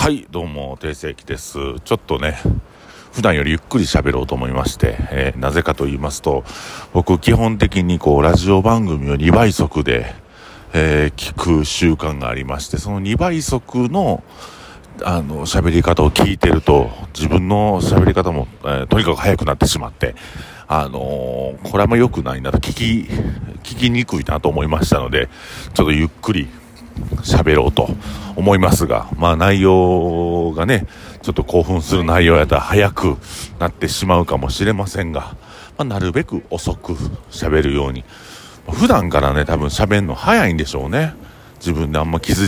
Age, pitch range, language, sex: 50-69, 75-95 Hz, Japanese, male